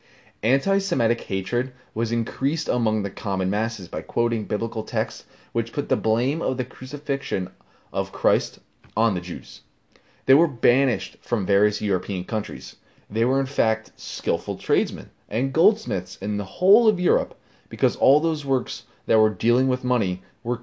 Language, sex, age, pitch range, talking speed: English, male, 20-39, 100-135 Hz, 155 wpm